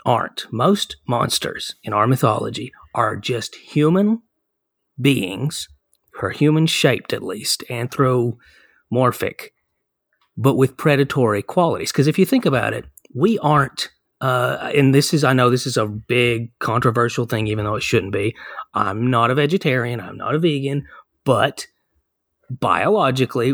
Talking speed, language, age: 140 wpm, English, 30-49